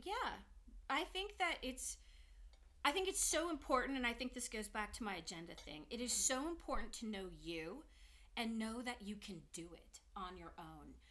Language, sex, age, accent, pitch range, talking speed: English, female, 40-59, American, 180-250 Hz, 200 wpm